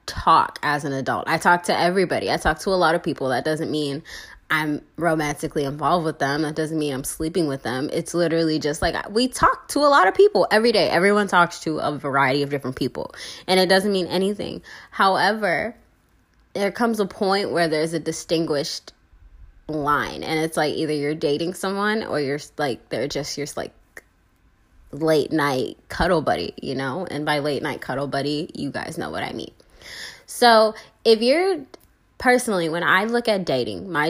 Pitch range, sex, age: 155-195 Hz, female, 10-29